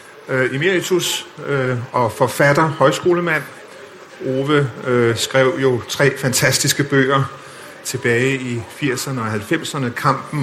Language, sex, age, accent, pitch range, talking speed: Danish, male, 50-69, native, 125-150 Hz, 90 wpm